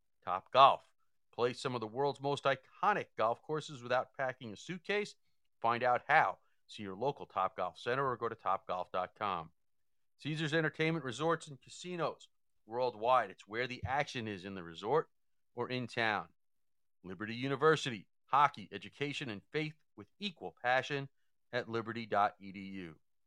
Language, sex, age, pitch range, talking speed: English, male, 40-59, 105-135 Hz, 140 wpm